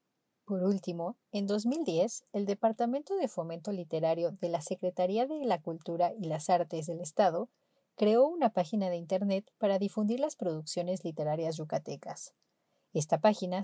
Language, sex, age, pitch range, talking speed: Spanish, female, 30-49, 170-220 Hz, 145 wpm